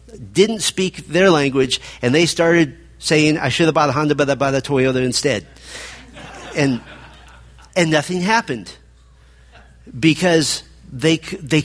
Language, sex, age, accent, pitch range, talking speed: English, male, 50-69, American, 125-165 Hz, 140 wpm